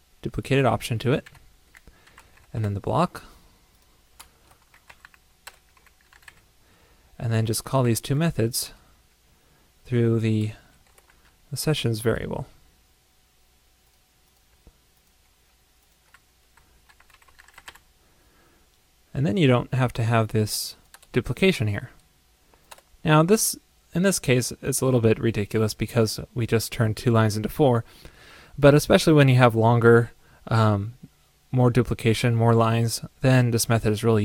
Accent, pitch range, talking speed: American, 110-130 Hz, 110 wpm